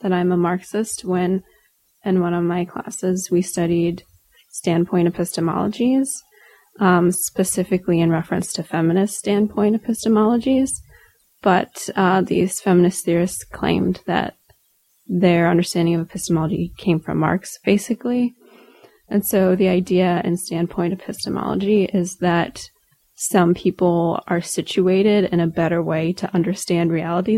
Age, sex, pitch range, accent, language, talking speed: 20-39, female, 175-210 Hz, American, English, 125 wpm